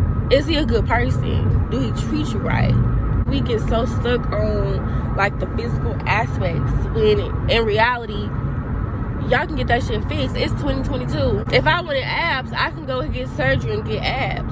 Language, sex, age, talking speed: English, female, 20-39, 180 wpm